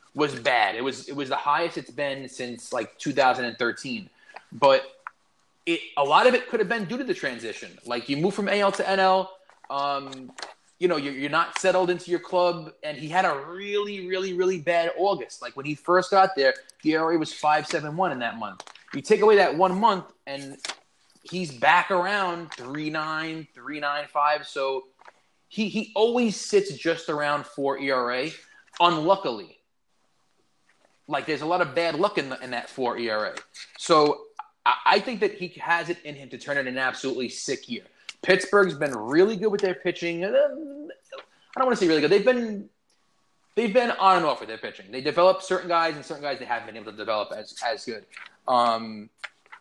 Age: 20-39